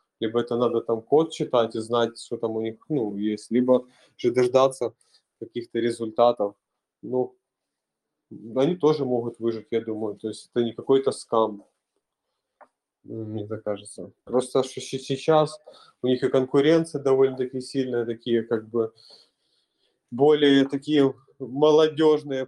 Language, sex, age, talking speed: Russian, male, 20-39, 130 wpm